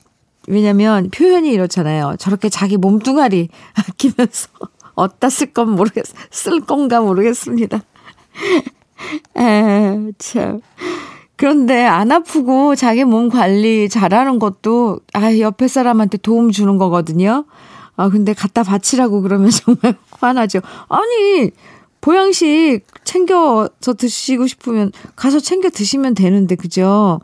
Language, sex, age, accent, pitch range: Korean, female, 40-59, native, 195-255 Hz